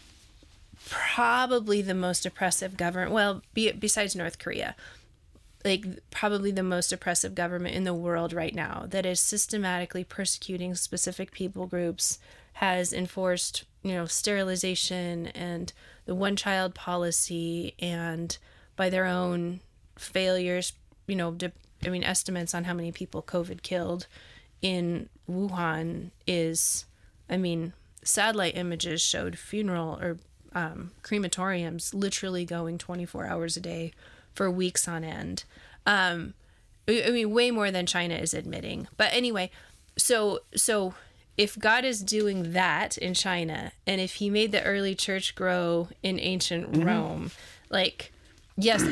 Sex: female